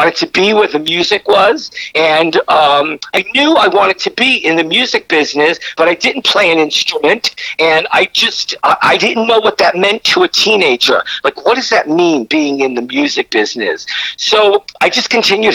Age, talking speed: 50-69, 195 wpm